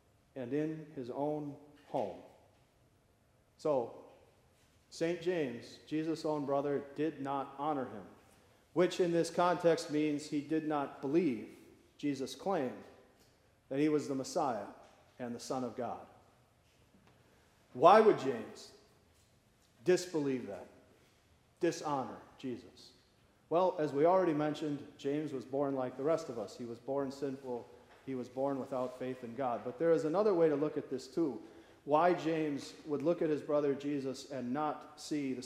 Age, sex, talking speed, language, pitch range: 40-59, male, 150 wpm, English, 125-155 Hz